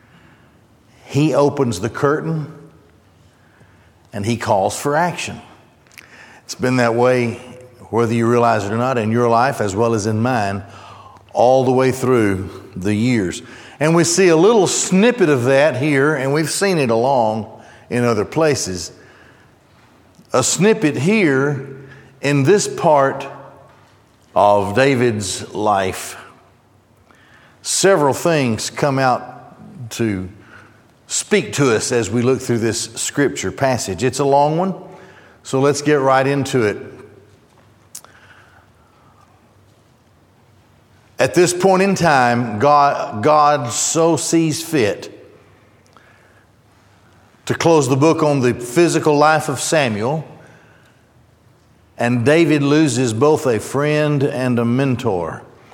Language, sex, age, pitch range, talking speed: English, male, 50-69, 115-150 Hz, 120 wpm